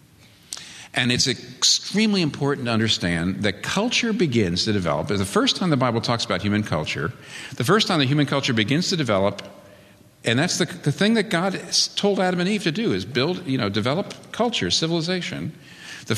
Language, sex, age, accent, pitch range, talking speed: English, male, 50-69, American, 105-150 Hz, 185 wpm